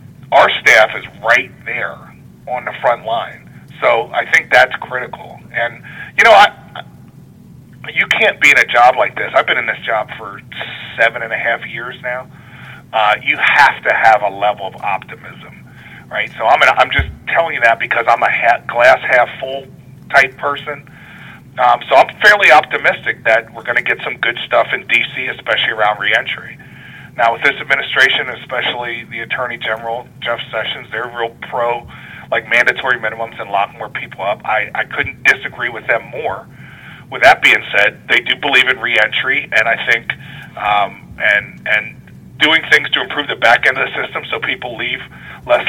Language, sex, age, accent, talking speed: English, male, 40-59, American, 185 wpm